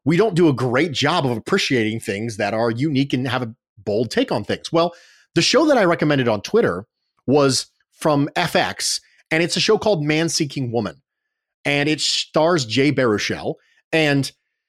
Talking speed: 180 wpm